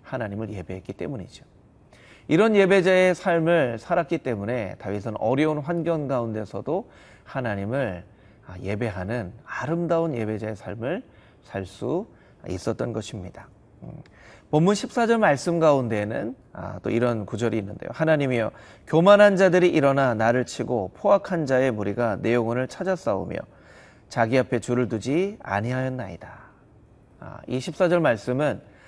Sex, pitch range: male, 110-165 Hz